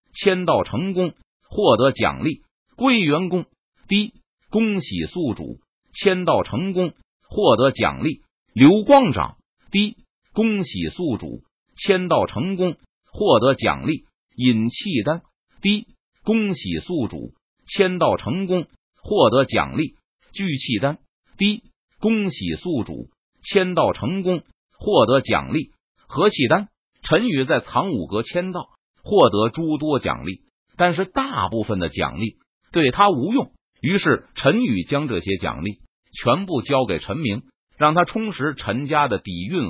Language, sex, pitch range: Chinese, male, 125-205 Hz